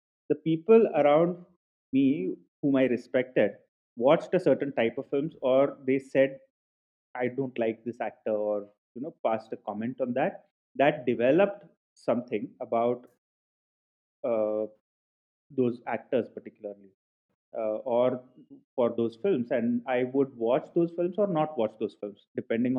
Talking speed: 140 wpm